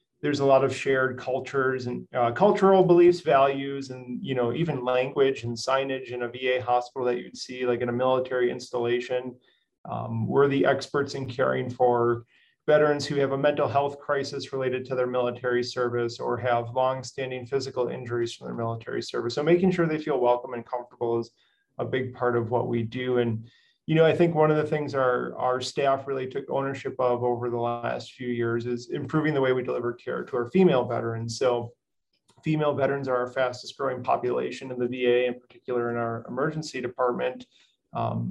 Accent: American